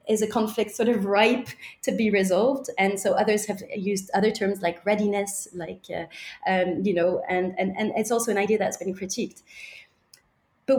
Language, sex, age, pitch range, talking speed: English, female, 30-49, 200-260 Hz, 190 wpm